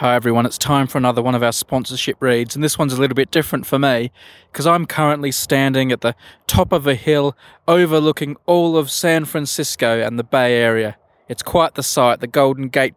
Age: 20-39